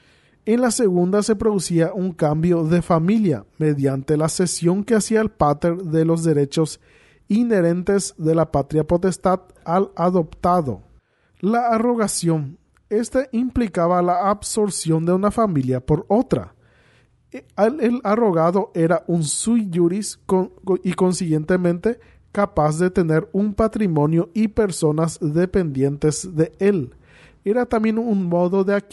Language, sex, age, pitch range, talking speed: Spanish, male, 40-59, 155-205 Hz, 120 wpm